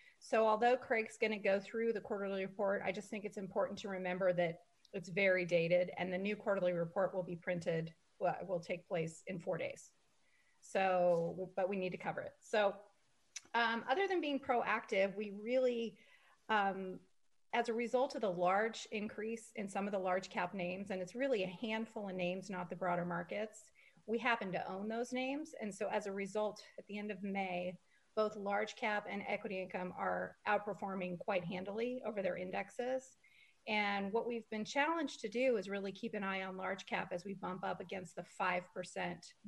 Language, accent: English, American